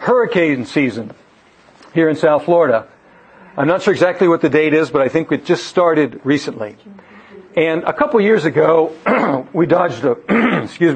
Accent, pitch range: American, 145-175 Hz